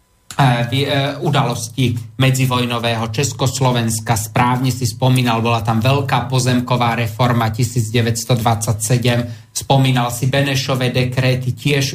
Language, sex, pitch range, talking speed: Slovak, male, 125-140 Hz, 85 wpm